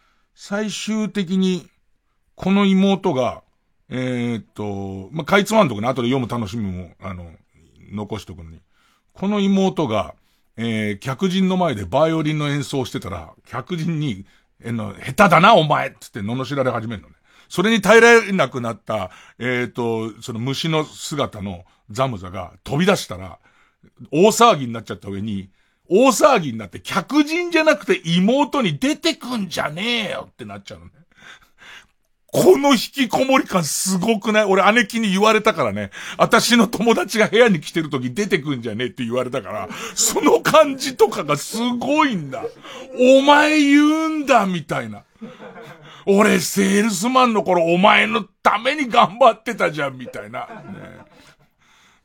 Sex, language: male, Japanese